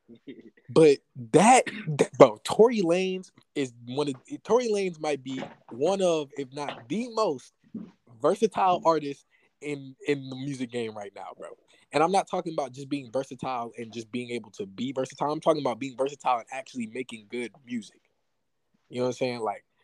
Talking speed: 180 wpm